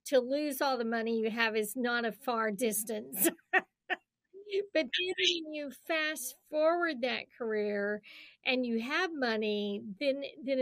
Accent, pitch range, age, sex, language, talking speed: American, 225-285 Hz, 50-69, female, English, 145 wpm